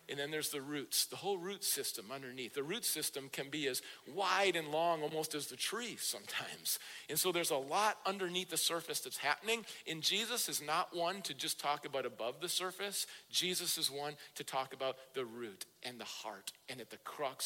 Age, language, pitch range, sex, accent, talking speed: 50-69, English, 165-230 Hz, male, American, 210 wpm